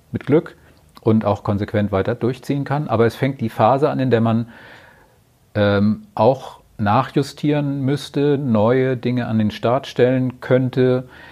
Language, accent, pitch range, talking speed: German, German, 110-130 Hz, 150 wpm